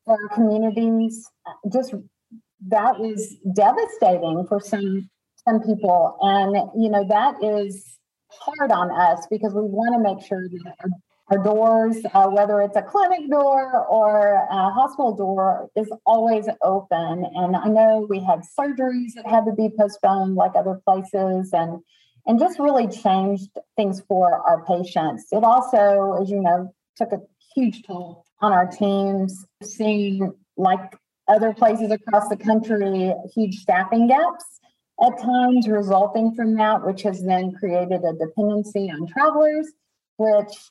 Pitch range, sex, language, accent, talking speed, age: 190-225 Hz, female, English, American, 145 wpm, 40-59